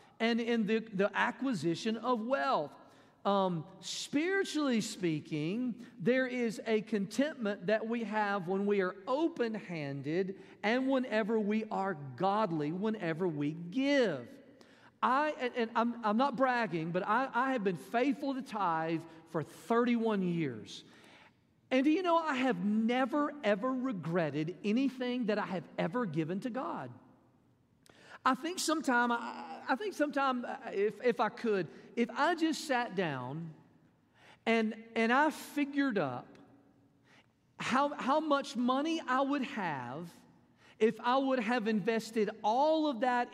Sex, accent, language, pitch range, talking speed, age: male, American, English, 195-260 Hz, 135 wpm, 40-59